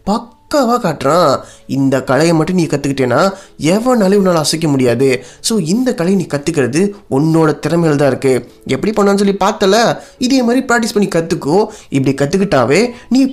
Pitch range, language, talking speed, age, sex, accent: 145-220 Hz, Tamil, 140 wpm, 20-39, male, native